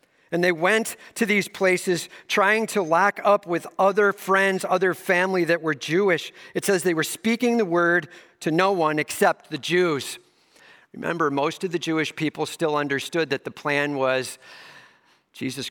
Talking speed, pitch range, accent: 170 wpm, 140-190 Hz, American